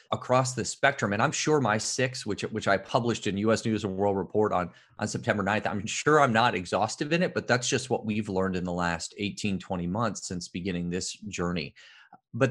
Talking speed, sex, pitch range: 220 wpm, male, 95-130 Hz